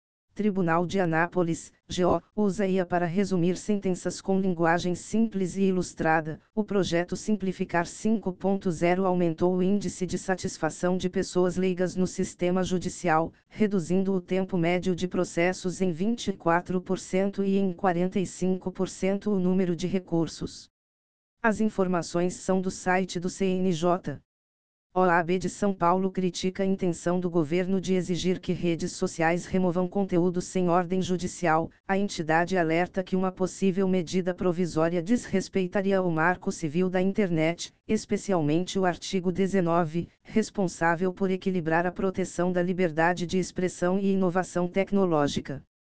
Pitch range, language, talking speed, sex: 175-190 Hz, Portuguese, 130 wpm, female